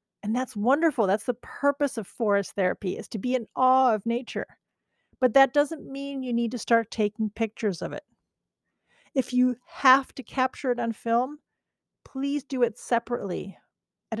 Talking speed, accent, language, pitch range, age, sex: 175 wpm, American, English, 220-260 Hz, 40-59, female